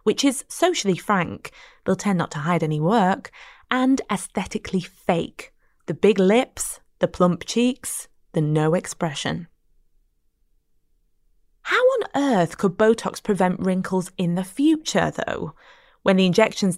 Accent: British